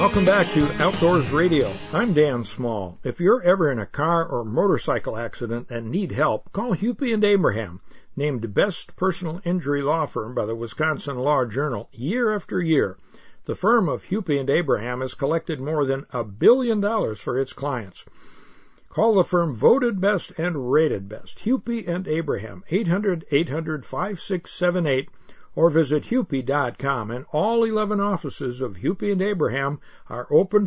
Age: 60-79